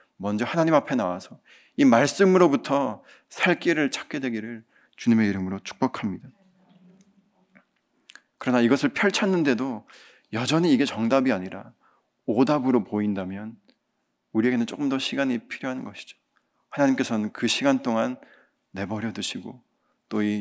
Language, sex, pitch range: Korean, male, 115-175 Hz